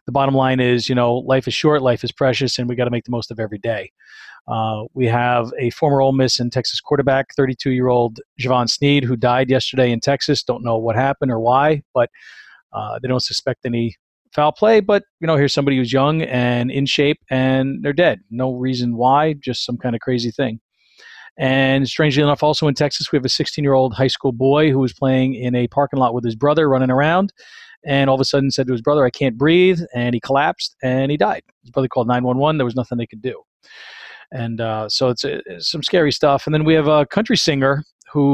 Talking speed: 225 wpm